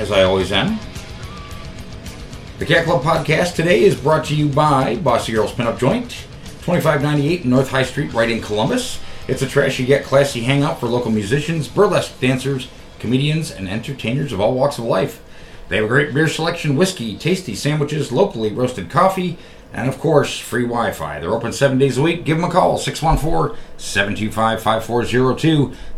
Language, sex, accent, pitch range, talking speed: English, male, American, 105-150 Hz, 165 wpm